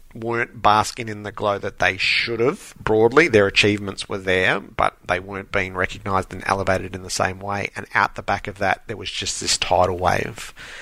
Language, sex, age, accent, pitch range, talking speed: English, male, 30-49, Australian, 95-110 Hz, 205 wpm